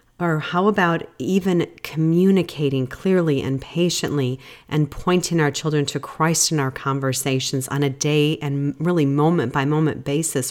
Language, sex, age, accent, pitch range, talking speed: English, female, 40-59, American, 135-170 Hz, 145 wpm